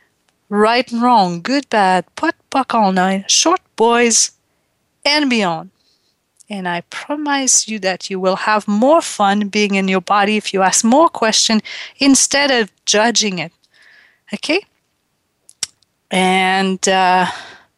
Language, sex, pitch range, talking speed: English, female, 190-255 Hz, 130 wpm